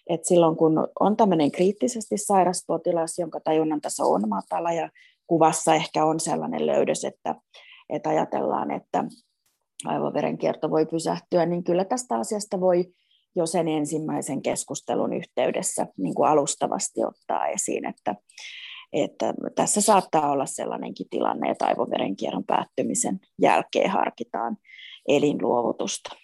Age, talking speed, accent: 30-49, 120 wpm, native